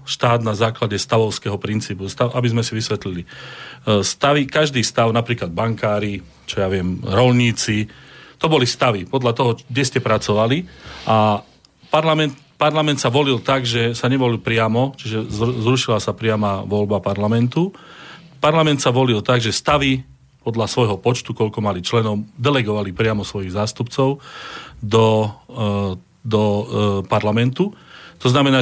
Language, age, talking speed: Slovak, 40-59, 135 wpm